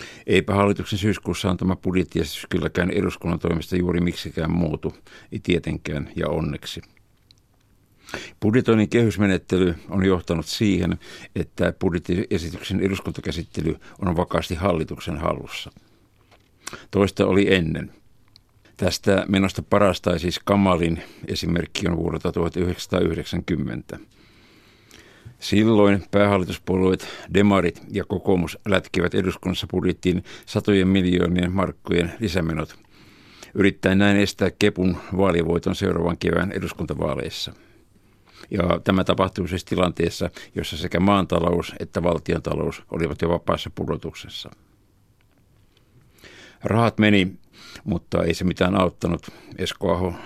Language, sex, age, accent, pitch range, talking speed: Finnish, male, 60-79, native, 85-100 Hz, 95 wpm